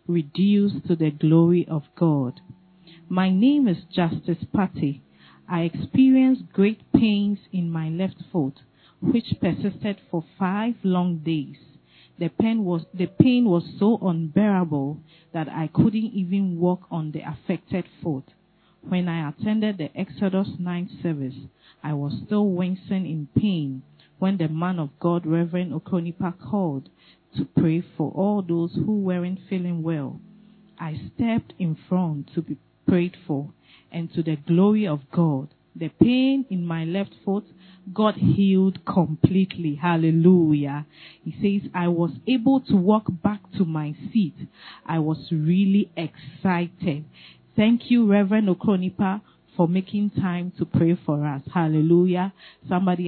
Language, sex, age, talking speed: English, female, 40-59, 140 wpm